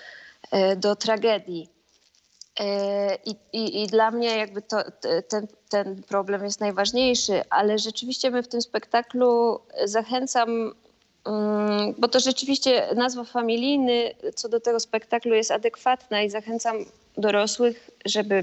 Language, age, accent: Polish, 20-39, native